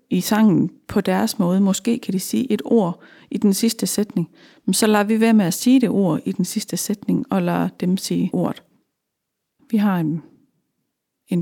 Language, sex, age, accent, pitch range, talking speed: Danish, female, 40-59, native, 190-235 Hz, 200 wpm